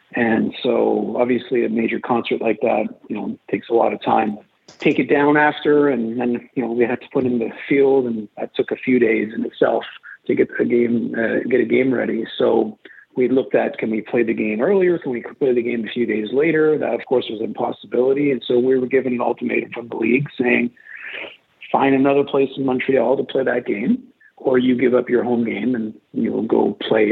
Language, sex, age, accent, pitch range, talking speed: English, male, 40-59, American, 120-135 Hz, 225 wpm